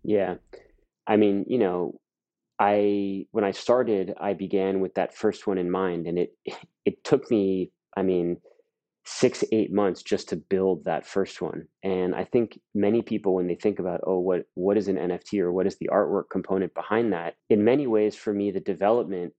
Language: English